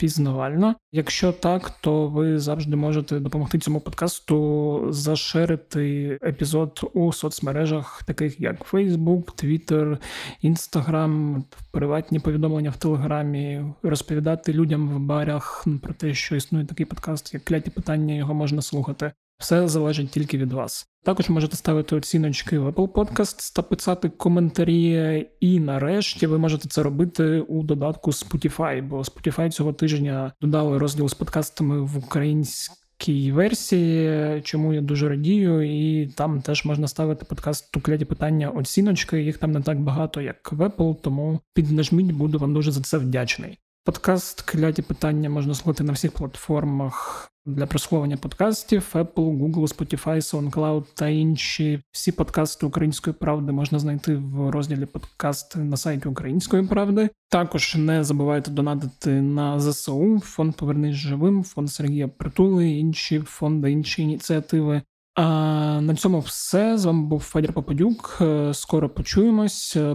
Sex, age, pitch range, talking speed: male, 20-39, 145-165 Hz, 140 wpm